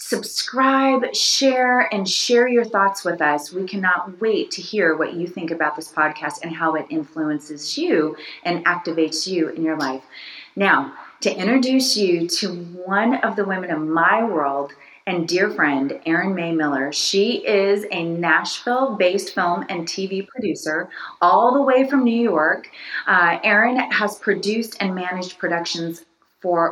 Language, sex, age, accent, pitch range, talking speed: English, female, 30-49, American, 160-200 Hz, 155 wpm